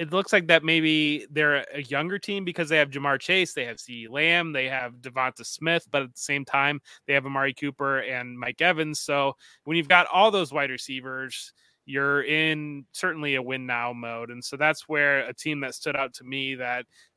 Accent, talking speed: American, 215 wpm